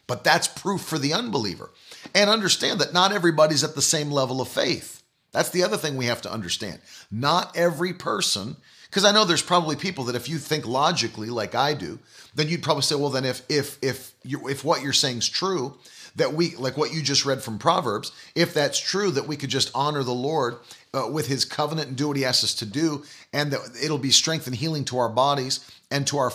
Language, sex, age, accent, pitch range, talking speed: English, male, 40-59, American, 130-170 Hz, 230 wpm